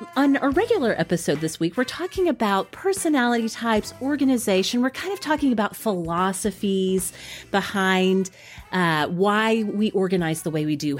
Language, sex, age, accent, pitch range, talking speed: English, female, 30-49, American, 165-230 Hz, 145 wpm